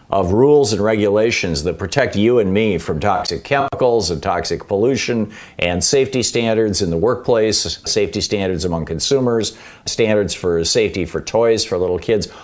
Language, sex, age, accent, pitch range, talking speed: English, male, 50-69, American, 95-120 Hz, 160 wpm